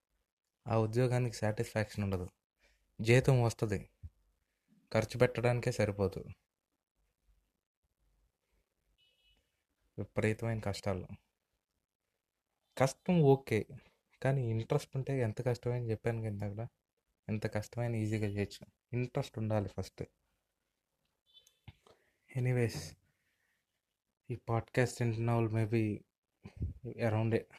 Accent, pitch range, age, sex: native, 100-120 Hz, 20-39, male